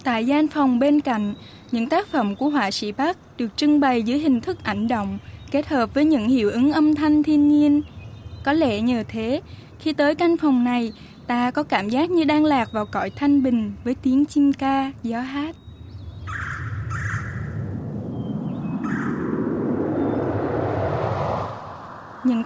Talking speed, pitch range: 150 wpm, 230-295 Hz